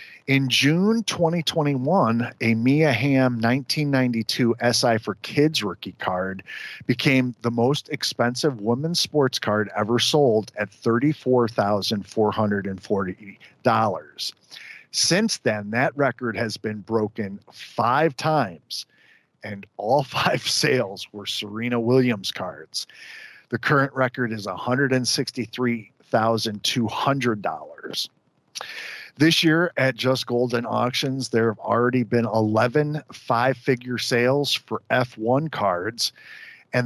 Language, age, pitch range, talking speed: English, 40-59, 110-135 Hz, 100 wpm